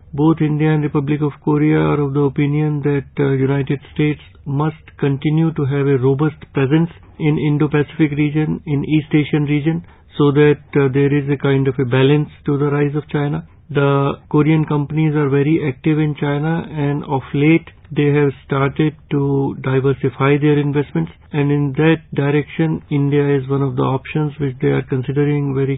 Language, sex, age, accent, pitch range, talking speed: English, male, 50-69, Indian, 135-150 Hz, 175 wpm